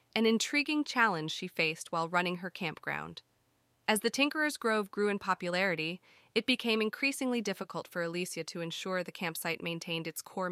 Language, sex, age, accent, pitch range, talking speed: English, female, 20-39, American, 170-210 Hz, 165 wpm